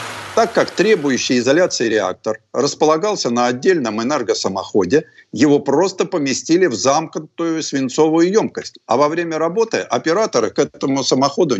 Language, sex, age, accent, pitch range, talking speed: Russian, male, 50-69, native, 130-180 Hz, 125 wpm